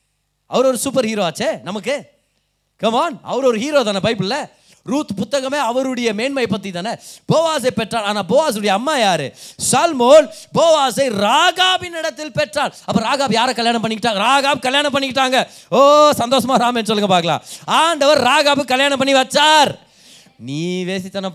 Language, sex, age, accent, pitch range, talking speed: Tamil, male, 30-49, native, 165-275 Hz, 120 wpm